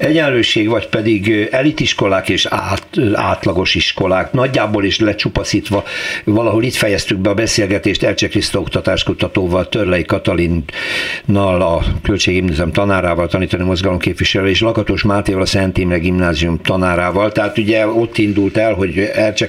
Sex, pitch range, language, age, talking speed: male, 90-110 Hz, Hungarian, 60-79, 130 wpm